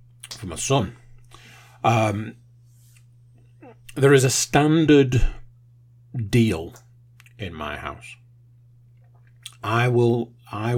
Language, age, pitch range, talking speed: English, 50-69, 115-120 Hz, 85 wpm